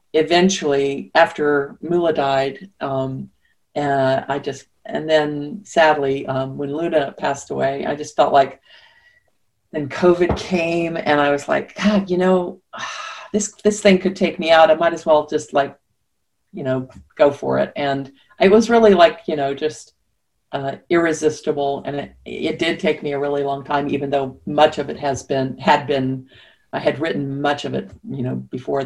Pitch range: 135-170 Hz